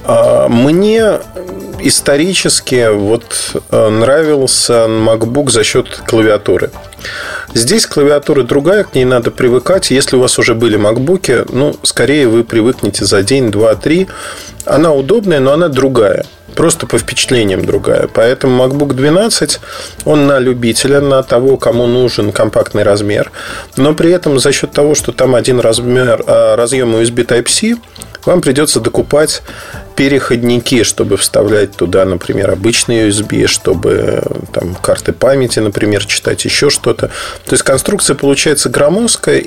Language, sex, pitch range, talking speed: Russian, male, 115-150 Hz, 130 wpm